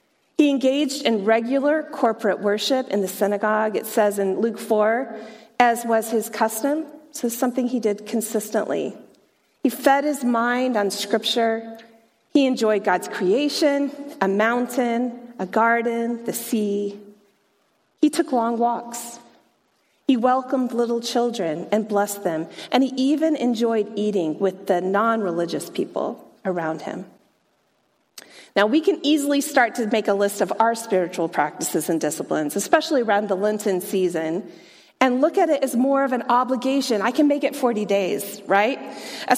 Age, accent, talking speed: 40-59, American, 150 wpm